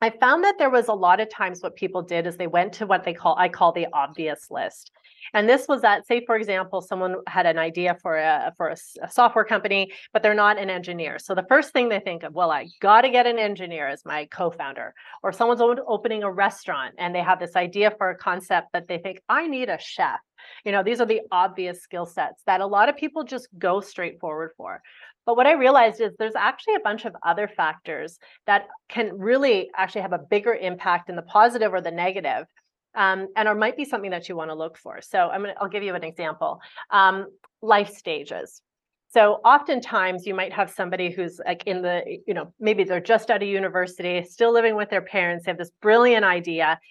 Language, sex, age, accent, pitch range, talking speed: English, female, 30-49, American, 180-225 Hz, 230 wpm